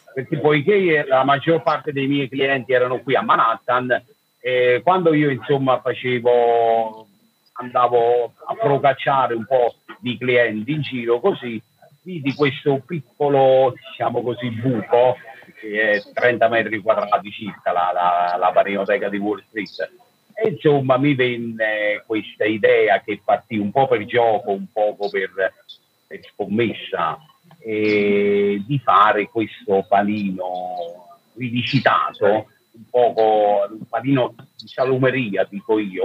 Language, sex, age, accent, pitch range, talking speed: Italian, male, 50-69, native, 105-135 Hz, 130 wpm